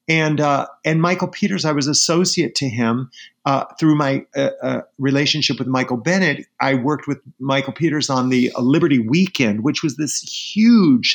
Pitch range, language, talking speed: 125-155 Hz, English, 170 wpm